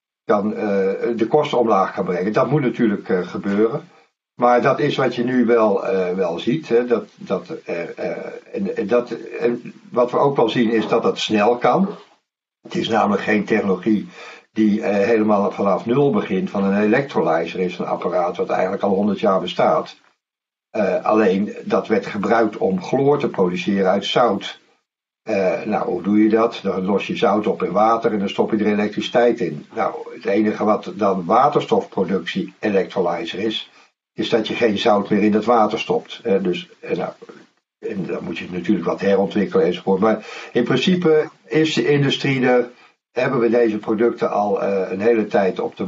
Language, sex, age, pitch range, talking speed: Dutch, male, 60-79, 100-120 Hz, 185 wpm